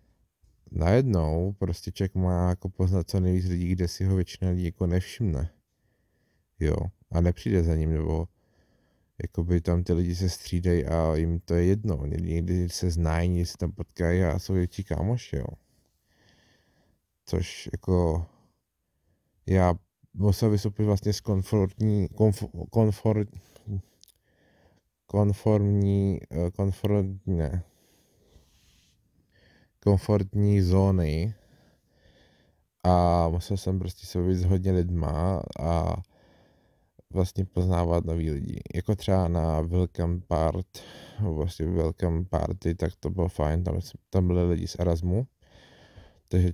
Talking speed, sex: 115 wpm, male